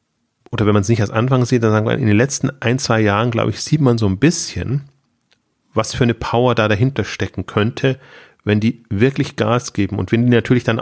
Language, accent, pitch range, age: German, German, 100-120 Hz, 30-49